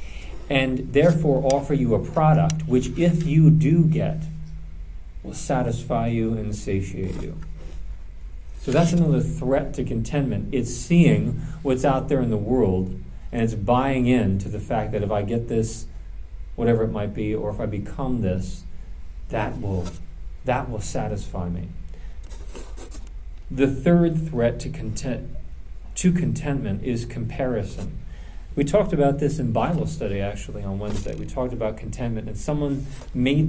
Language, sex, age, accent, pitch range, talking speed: English, male, 40-59, American, 85-140 Hz, 150 wpm